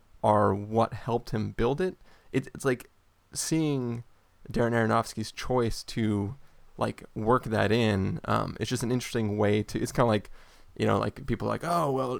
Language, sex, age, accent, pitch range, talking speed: English, male, 20-39, American, 105-125 Hz, 175 wpm